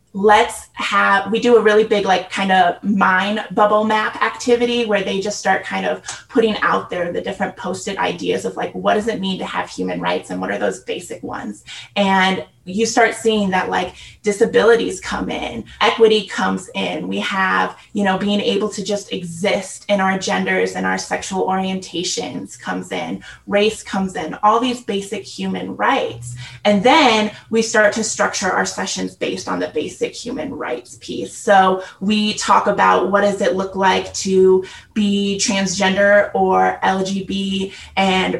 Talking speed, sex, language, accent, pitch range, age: 175 wpm, female, English, American, 190-220 Hz, 20-39